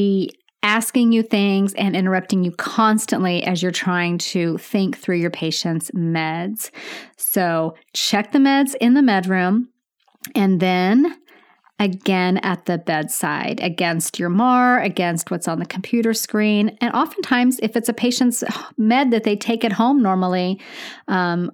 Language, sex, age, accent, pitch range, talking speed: English, female, 30-49, American, 175-230 Hz, 150 wpm